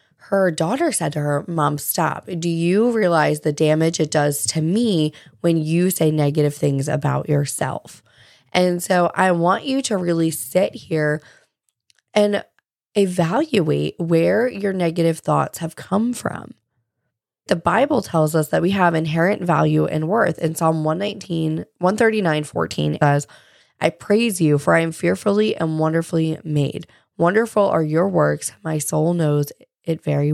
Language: English